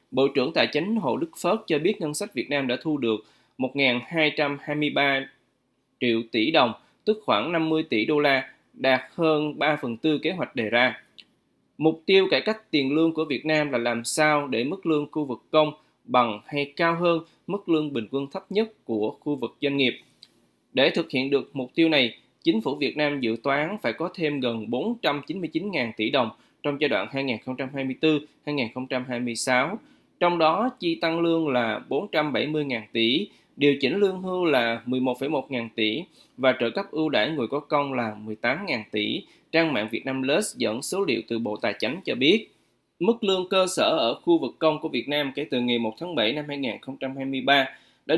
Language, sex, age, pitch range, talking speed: Vietnamese, male, 20-39, 125-160 Hz, 190 wpm